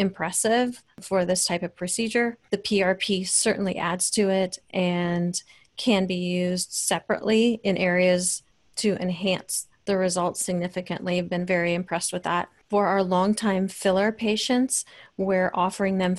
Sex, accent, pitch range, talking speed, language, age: female, American, 180-195 Hz, 140 wpm, English, 30-49